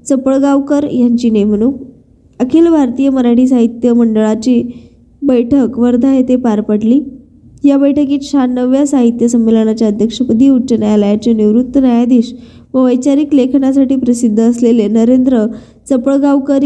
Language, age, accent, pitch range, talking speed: Marathi, 20-39, native, 235-275 Hz, 105 wpm